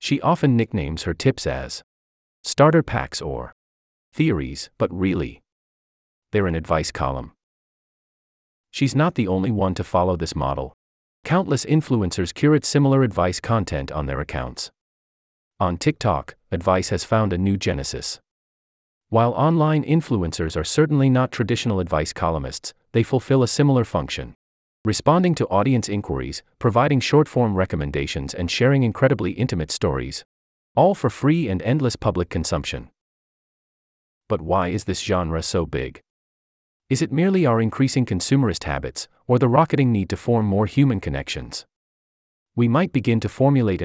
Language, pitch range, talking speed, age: English, 80-130 Hz, 140 wpm, 30-49